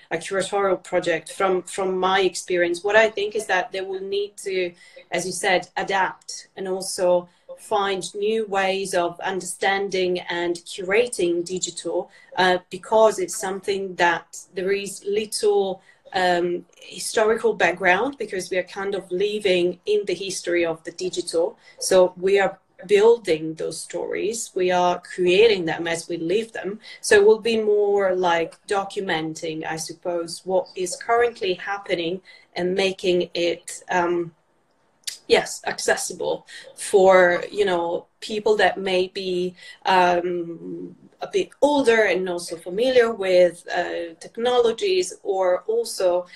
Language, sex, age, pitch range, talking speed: English, female, 30-49, 180-215 Hz, 135 wpm